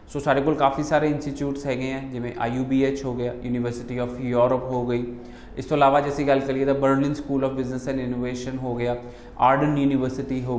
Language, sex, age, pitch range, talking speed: Punjabi, male, 30-49, 130-160 Hz, 205 wpm